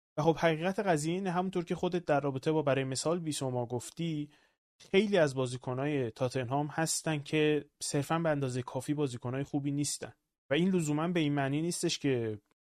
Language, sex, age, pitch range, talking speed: Persian, male, 30-49, 125-155 Hz, 185 wpm